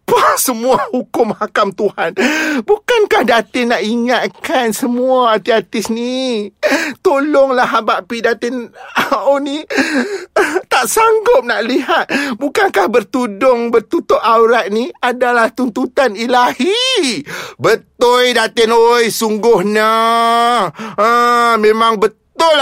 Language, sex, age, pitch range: Malay, male, 30-49, 210-265 Hz